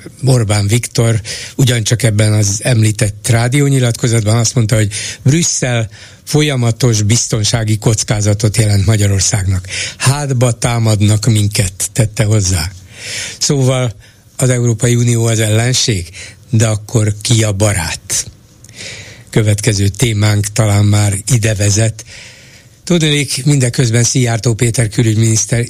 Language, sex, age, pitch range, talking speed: Hungarian, male, 60-79, 105-125 Hz, 100 wpm